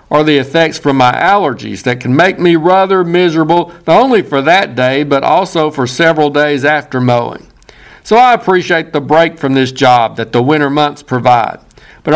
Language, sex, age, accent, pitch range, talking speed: English, male, 60-79, American, 140-180 Hz, 190 wpm